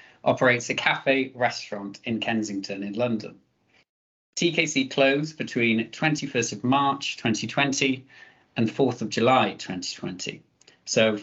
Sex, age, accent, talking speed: male, 40-59, British, 110 wpm